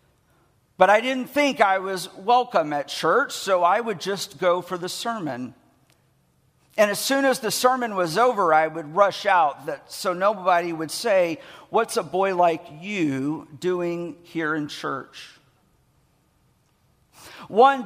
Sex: male